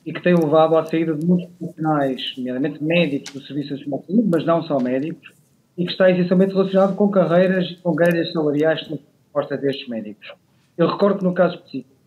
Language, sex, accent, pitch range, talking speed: Portuguese, male, Portuguese, 150-185 Hz, 195 wpm